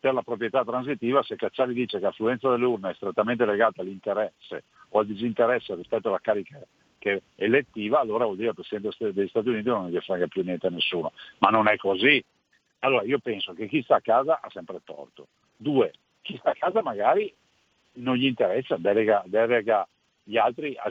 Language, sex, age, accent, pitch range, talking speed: Italian, male, 50-69, native, 120-180 Hz, 195 wpm